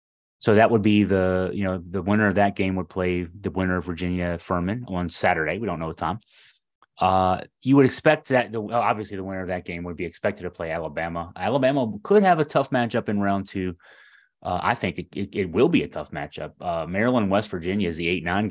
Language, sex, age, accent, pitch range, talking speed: English, male, 30-49, American, 90-110 Hz, 225 wpm